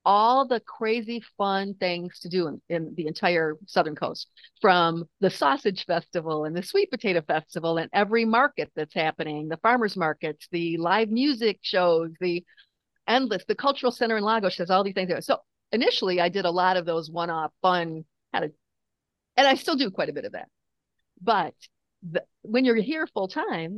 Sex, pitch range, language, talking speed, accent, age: female, 170-230 Hz, English, 185 wpm, American, 50-69